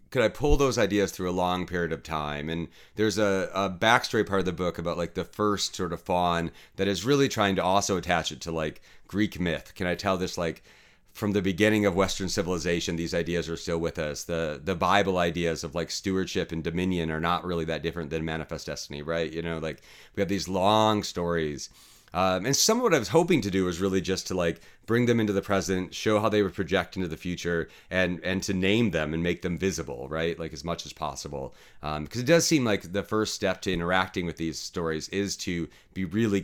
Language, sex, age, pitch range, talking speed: English, male, 30-49, 85-100 Hz, 235 wpm